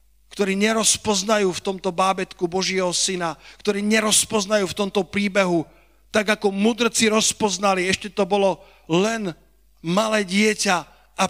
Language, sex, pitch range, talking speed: Slovak, male, 155-200 Hz, 120 wpm